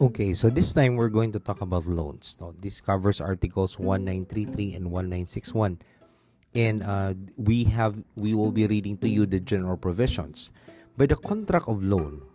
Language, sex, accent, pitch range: English, male, Filipino, 95-120 Hz